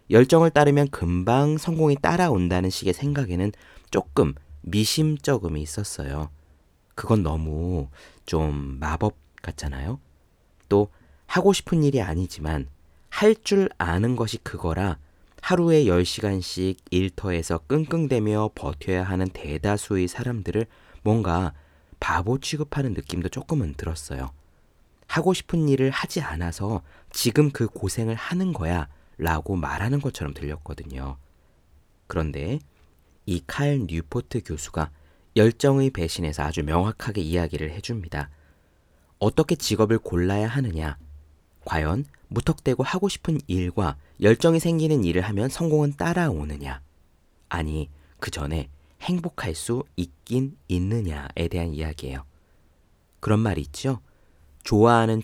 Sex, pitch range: male, 75-120 Hz